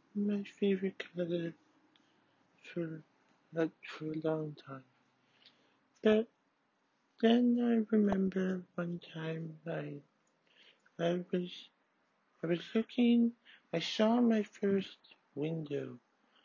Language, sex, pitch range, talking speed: English, male, 165-215 Hz, 95 wpm